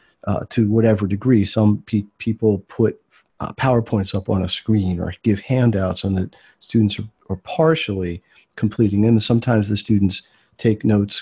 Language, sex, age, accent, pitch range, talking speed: English, male, 40-59, American, 100-120 Hz, 160 wpm